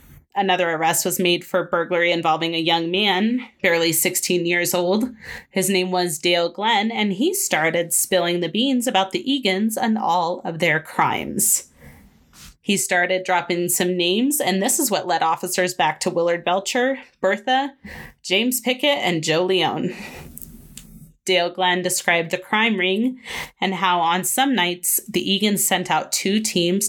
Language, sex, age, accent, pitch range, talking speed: English, female, 20-39, American, 170-195 Hz, 160 wpm